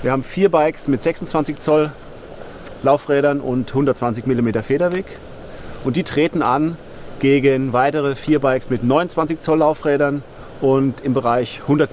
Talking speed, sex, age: 140 wpm, male, 40-59